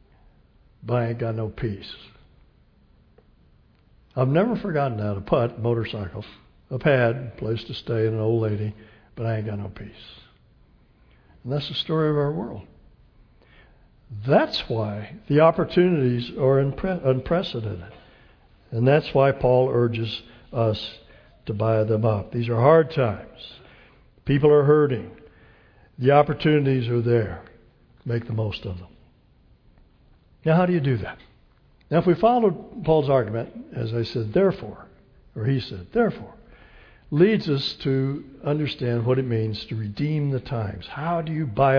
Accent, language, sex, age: American, English, male, 60-79